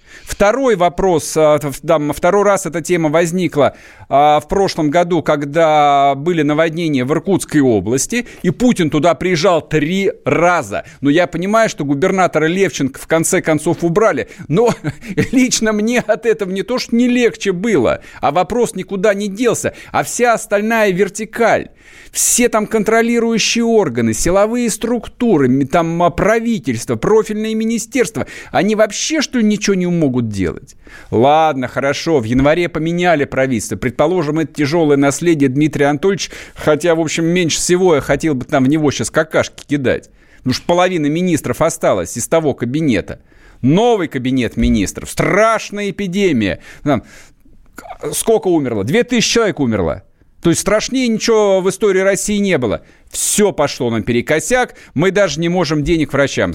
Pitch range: 145-210 Hz